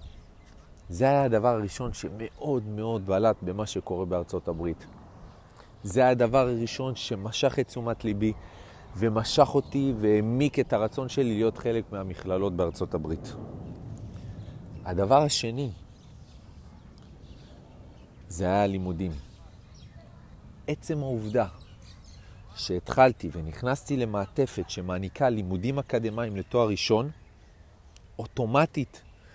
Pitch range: 95-125 Hz